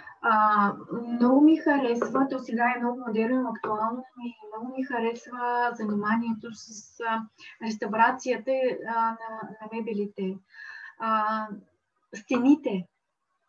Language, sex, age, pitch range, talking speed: Bulgarian, female, 20-39, 215-260 Hz, 100 wpm